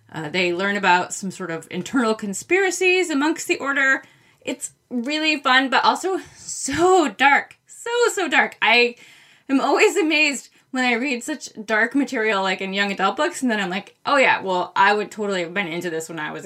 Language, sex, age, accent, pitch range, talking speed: English, female, 20-39, American, 185-250 Hz, 195 wpm